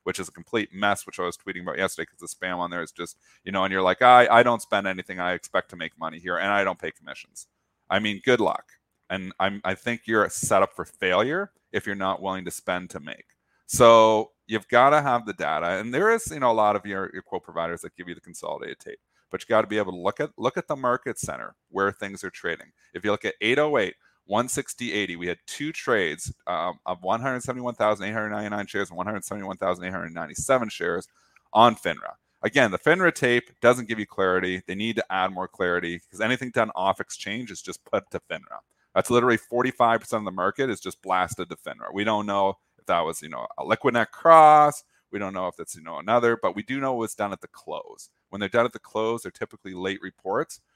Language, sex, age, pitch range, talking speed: English, male, 30-49, 95-120 Hz, 250 wpm